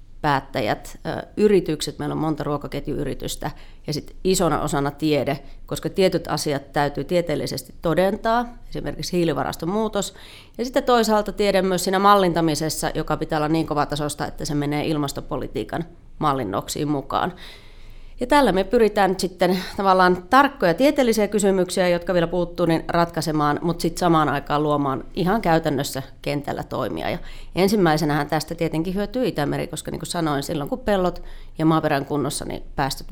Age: 30-49